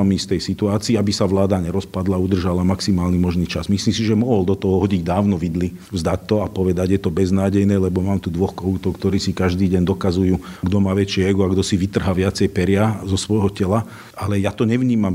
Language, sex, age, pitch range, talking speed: Slovak, male, 40-59, 95-115 Hz, 215 wpm